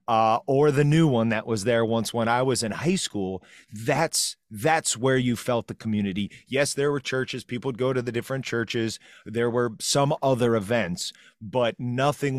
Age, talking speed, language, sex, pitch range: 30-49, 195 wpm, English, male, 105-130 Hz